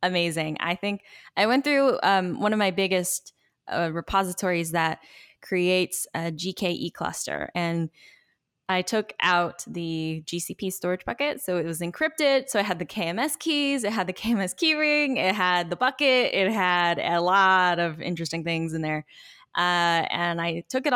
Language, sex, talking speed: English, female, 170 wpm